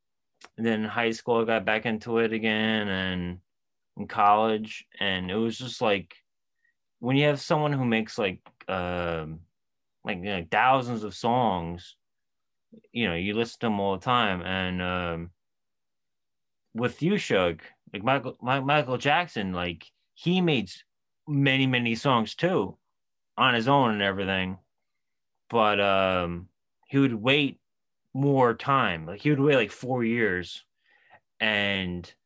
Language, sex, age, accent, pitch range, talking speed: English, male, 30-49, American, 95-125 Hz, 145 wpm